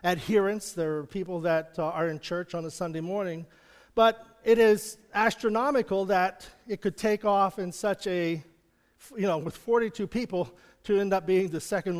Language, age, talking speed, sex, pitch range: English, 40-59, 175 wpm, male, 175-230 Hz